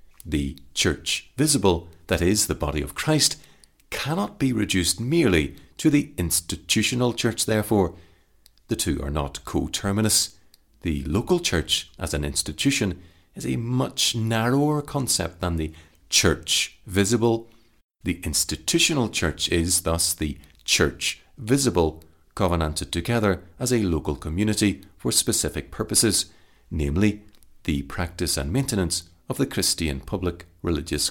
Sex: male